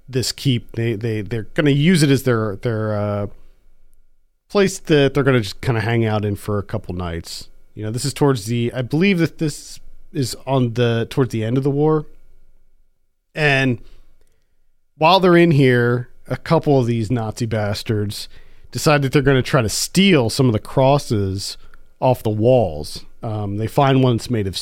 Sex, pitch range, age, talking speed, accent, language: male, 110-140 Hz, 40-59, 190 wpm, American, English